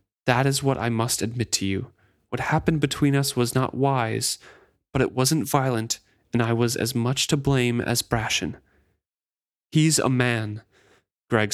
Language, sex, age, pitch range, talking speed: English, male, 30-49, 120-155 Hz, 165 wpm